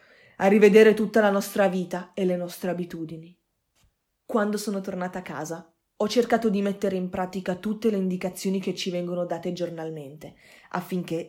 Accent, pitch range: native, 170-195 Hz